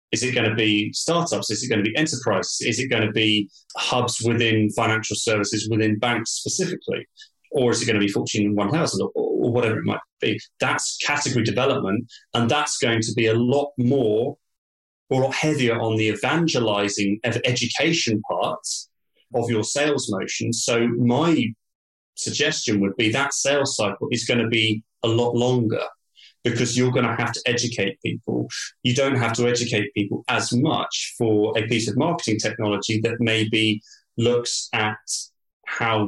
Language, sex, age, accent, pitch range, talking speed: English, male, 30-49, British, 110-130 Hz, 170 wpm